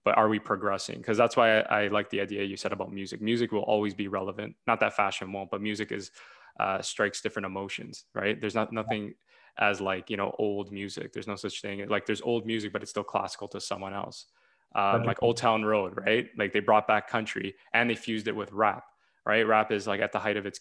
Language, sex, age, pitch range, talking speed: English, male, 20-39, 100-115 Hz, 240 wpm